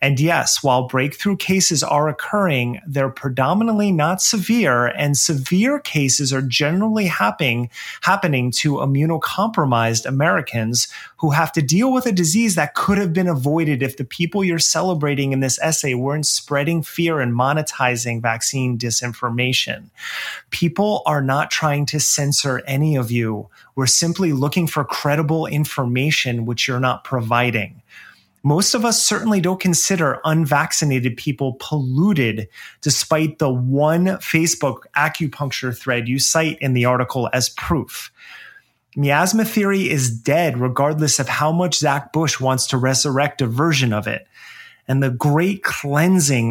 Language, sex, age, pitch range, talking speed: English, male, 30-49, 130-165 Hz, 140 wpm